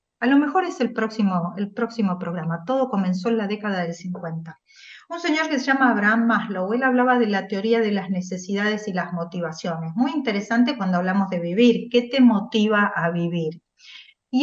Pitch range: 195-255 Hz